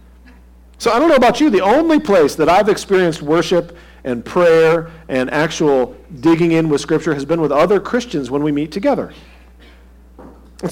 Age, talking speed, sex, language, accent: 40-59, 175 wpm, male, English, American